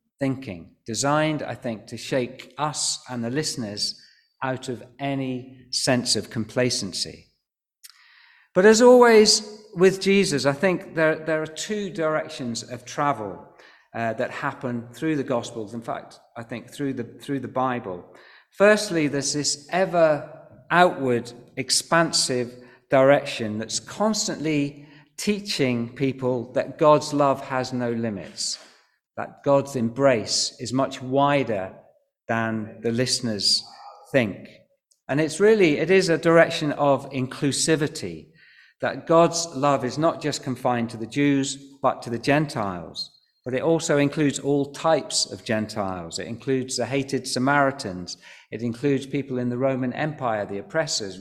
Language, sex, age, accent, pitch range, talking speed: English, male, 50-69, British, 120-155 Hz, 135 wpm